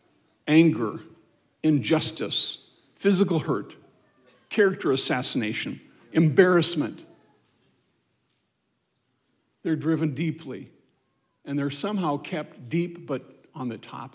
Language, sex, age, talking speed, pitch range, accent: English, male, 60-79, 80 wpm, 150-215 Hz, American